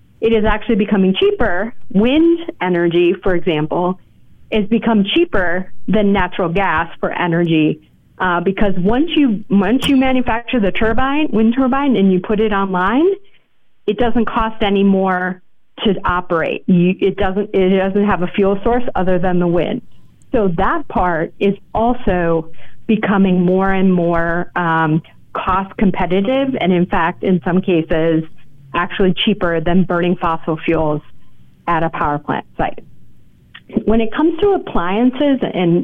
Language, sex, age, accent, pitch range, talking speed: English, female, 40-59, American, 180-225 Hz, 145 wpm